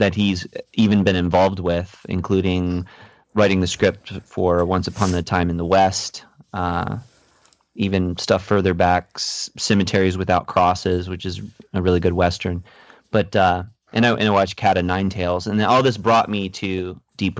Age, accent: 30-49, American